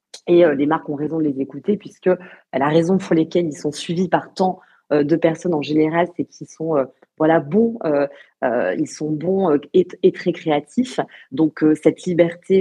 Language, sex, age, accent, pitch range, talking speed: French, female, 30-49, French, 150-185 Hz, 180 wpm